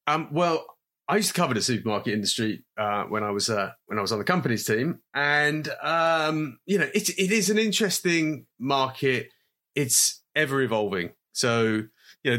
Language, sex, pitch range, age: English, male, 115-150 Hz, 30-49